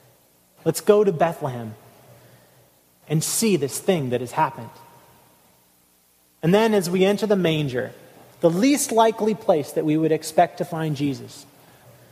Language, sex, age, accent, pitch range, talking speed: English, male, 30-49, American, 135-195 Hz, 145 wpm